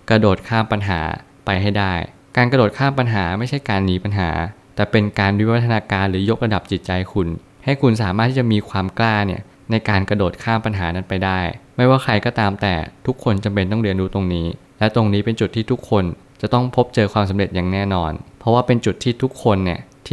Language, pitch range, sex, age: Thai, 95-115 Hz, male, 20-39